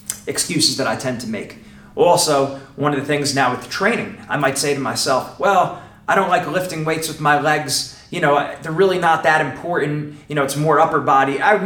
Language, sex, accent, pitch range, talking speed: English, male, American, 135-165 Hz, 225 wpm